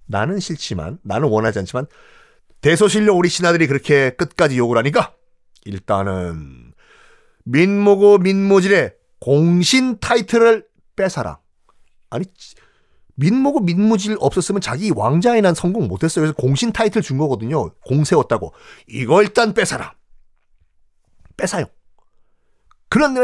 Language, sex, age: Korean, male, 40-59